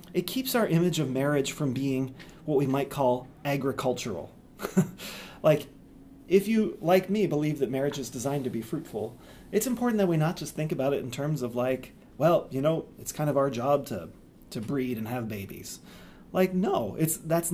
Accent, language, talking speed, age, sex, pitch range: American, English, 195 wpm, 40-59, male, 125-175 Hz